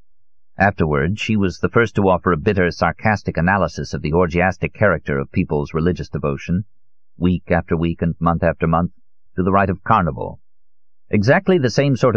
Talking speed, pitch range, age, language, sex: 175 wpm, 85-95 Hz, 50-69, English, male